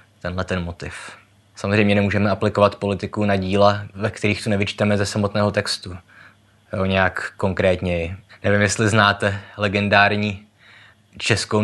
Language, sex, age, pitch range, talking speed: Czech, male, 20-39, 95-105 Hz, 125 wpm